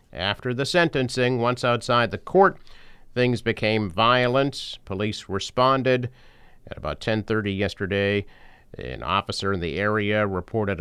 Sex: male